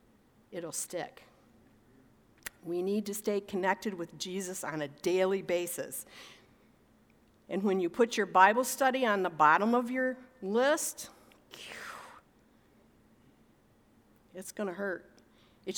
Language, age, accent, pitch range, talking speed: English, 50-69, American, 185-225 Hz, 120 wpm